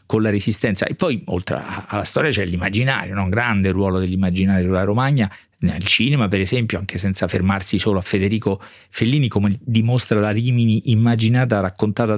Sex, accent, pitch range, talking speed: male, native, 100-120 Hz, 165 wpm